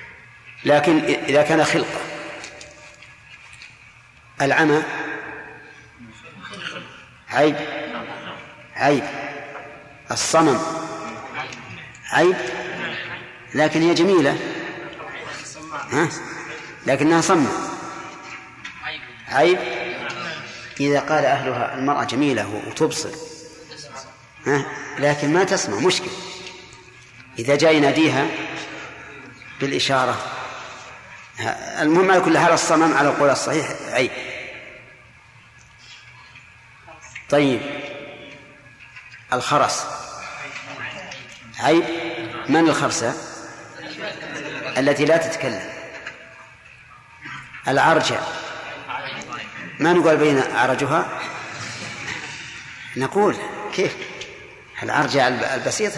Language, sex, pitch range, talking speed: Arabic, male, 130-160 Hz, 60 wpm